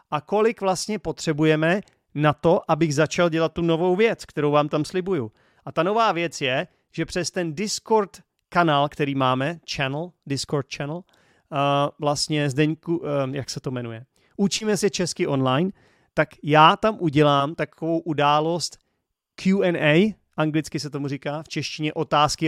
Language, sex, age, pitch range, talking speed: Czech, male, 40-59, 145-175 Hz, 150 wpm